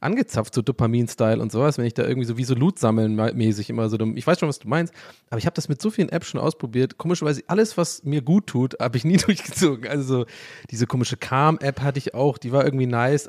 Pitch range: 120-150 Hz